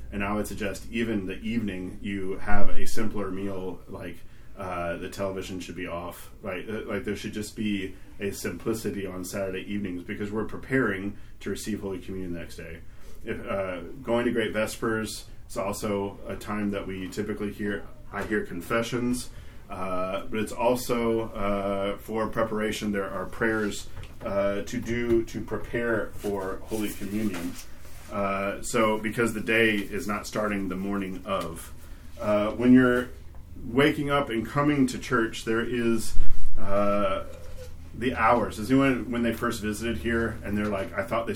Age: 30-49